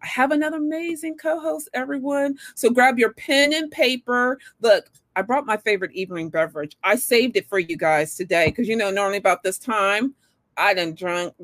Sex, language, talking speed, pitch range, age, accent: female, English, 190 wpm, 195-275 Hz, 40-59, American